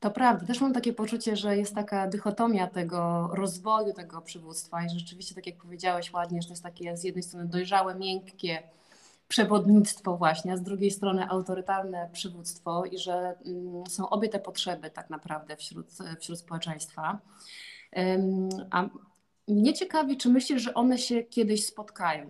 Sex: female